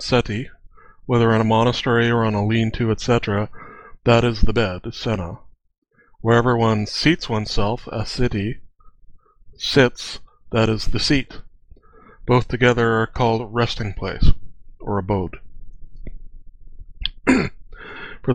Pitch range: 110-125 Hz